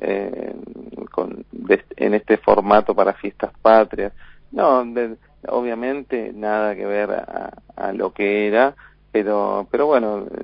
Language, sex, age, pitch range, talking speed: Spanish, male, 40-59, 105-120 Hz, 140 wpm